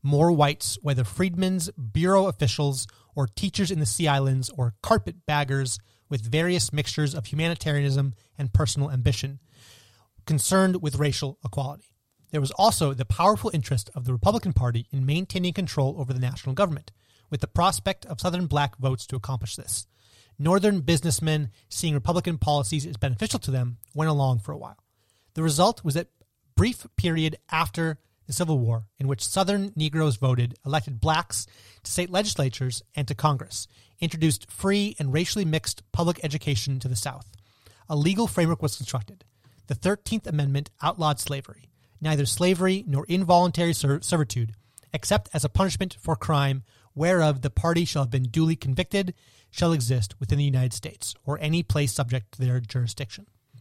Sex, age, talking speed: male, 30-49, 160 wpm